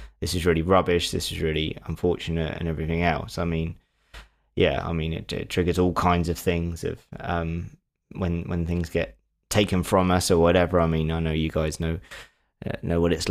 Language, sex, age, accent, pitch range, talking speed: English, male, 20-39, British, 80-95 Hz, 200 wpm